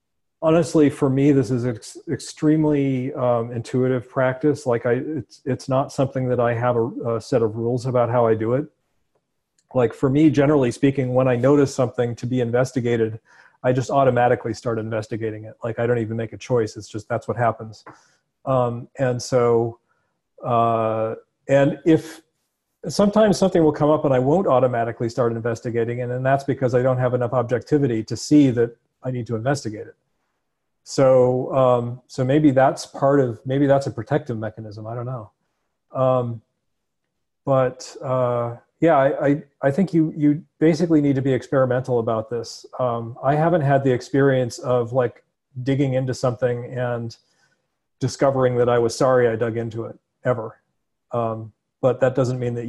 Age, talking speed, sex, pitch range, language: 40-59, 170 wpm, male, 120-140 Hz, English